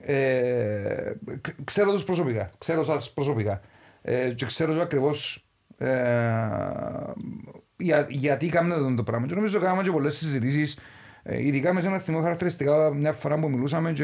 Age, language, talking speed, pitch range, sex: 40-59, Greek, 145 wpm, 125-180 Hz, male